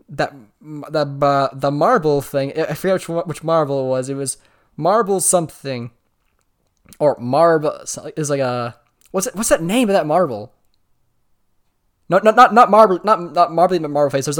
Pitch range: 130-175 Hz